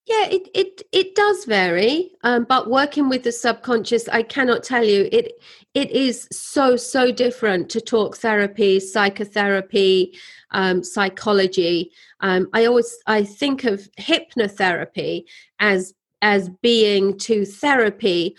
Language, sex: English, female